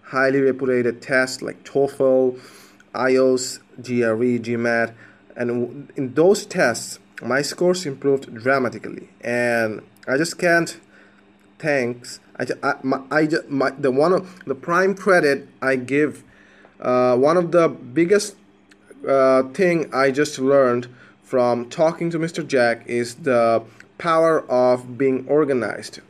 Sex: male